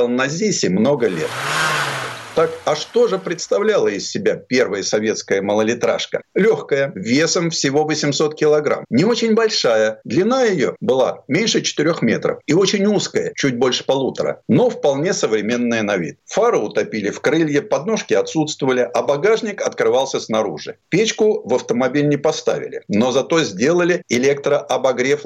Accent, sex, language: native, male, Russian